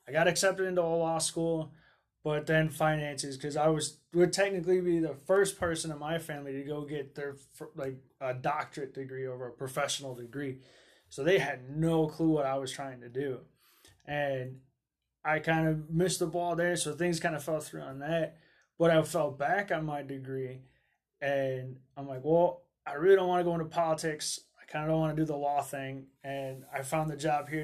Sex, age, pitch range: male, 20-39, 140-165 Hz